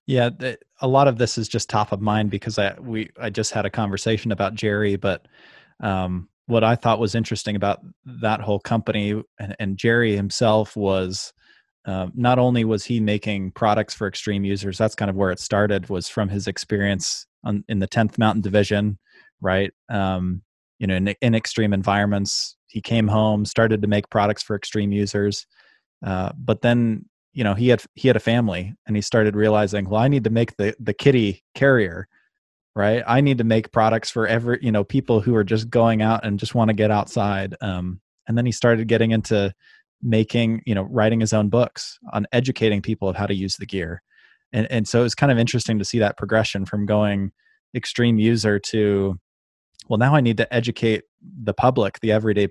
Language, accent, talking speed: English, American, 200 wpm